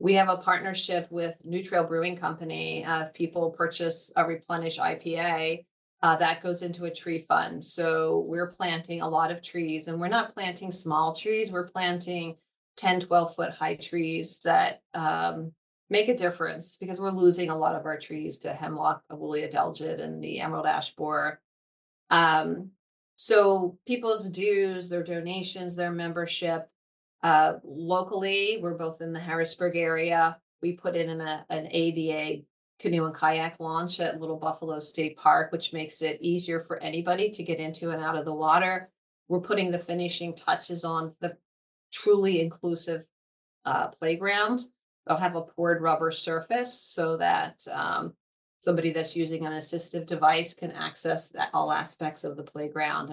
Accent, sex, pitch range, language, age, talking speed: American, female, 160-180 Hz, English, 30-49, 165 wpm